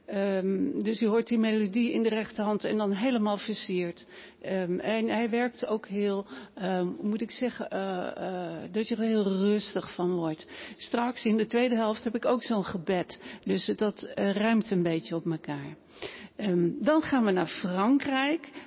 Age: 60-79